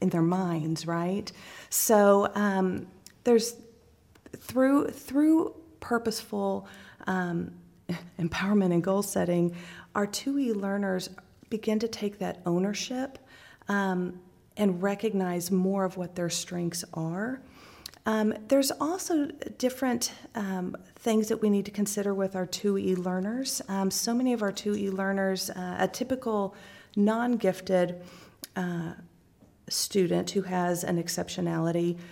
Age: 40-59